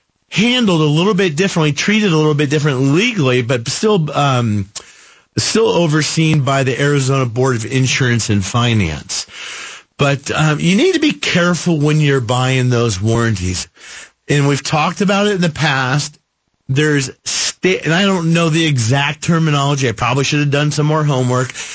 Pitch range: 130-170 Hz